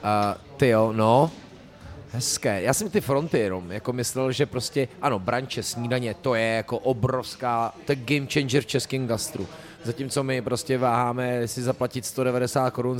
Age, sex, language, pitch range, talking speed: 30-49, male, Czech, 115-135 Hz, 155 wpm